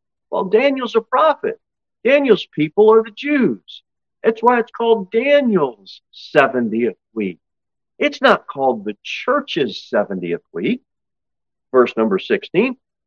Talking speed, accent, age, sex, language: 120 wpm, American, 50-69, male, English